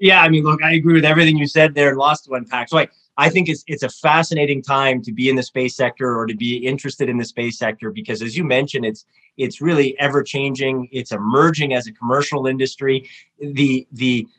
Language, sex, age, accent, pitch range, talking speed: English, male, 30-49, American, 125-145 Hz, 220 wpm